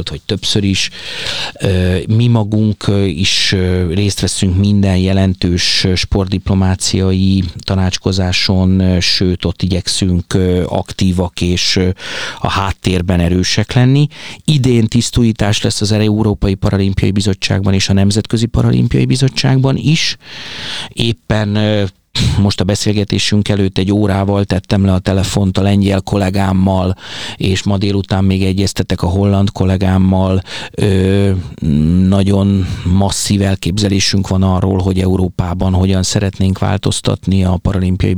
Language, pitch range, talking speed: Hungarian, 95-105 Hz, 110 wpm